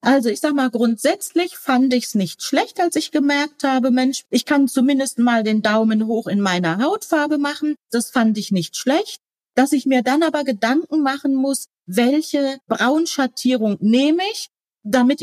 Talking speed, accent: 175 wpm, German